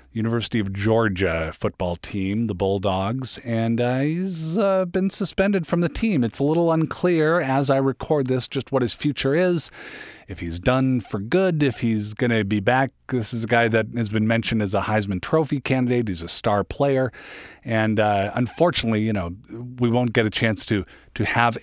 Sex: male